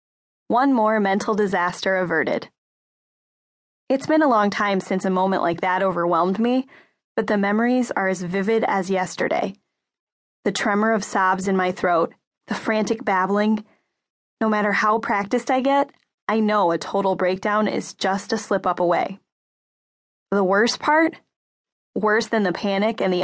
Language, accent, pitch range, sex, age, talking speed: English, American, 195-240 Hz, female, 10-29, 160 wpm